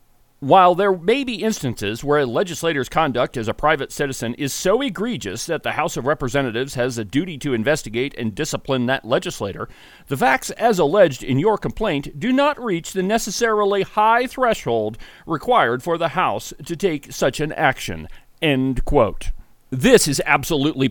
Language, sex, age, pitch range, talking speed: English, male, 40-59, 130-195 Hz, 165 wpm